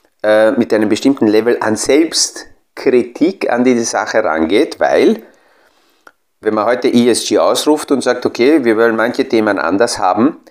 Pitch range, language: 110-150 Hz, German